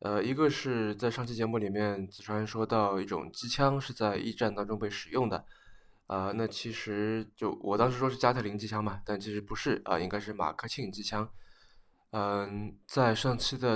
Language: Chinese